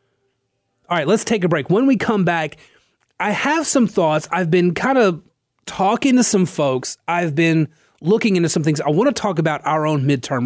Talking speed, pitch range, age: 200 wpm, 135-180 Hz, 30-49